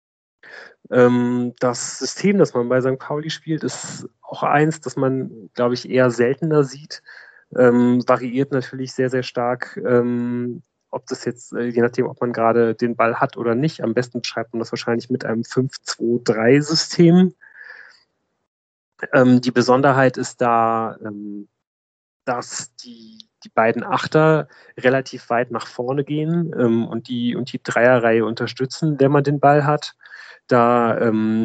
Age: 30-49